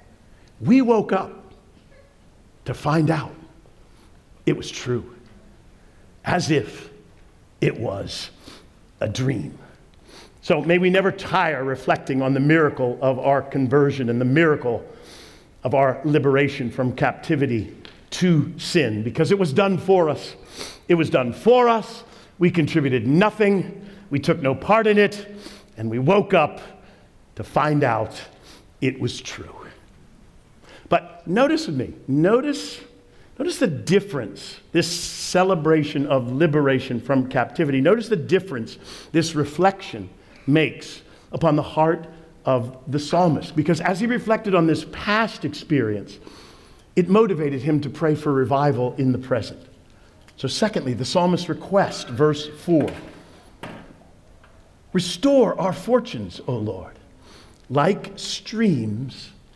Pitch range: 130-185 Hz